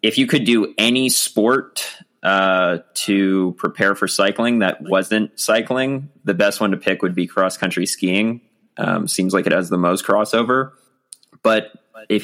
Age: 20-39